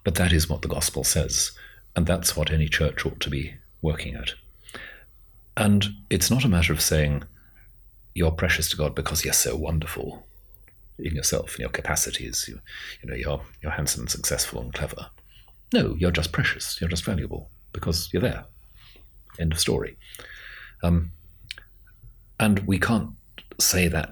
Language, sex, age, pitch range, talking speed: English, male, 40-59, 75-95 Hz, 165 wpm